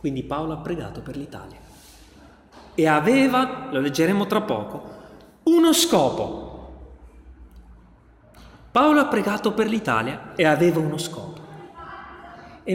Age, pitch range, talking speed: 30-49, 125-200 Hz, 115 wpm